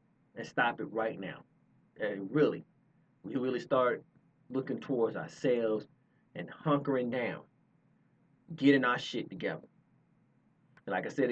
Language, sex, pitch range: English, male, 135-150 Hz